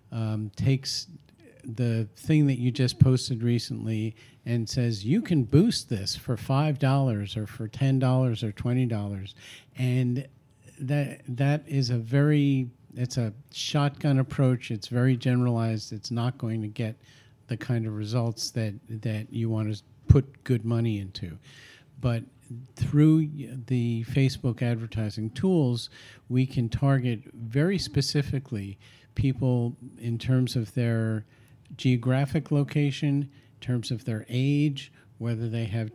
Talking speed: 130 wpm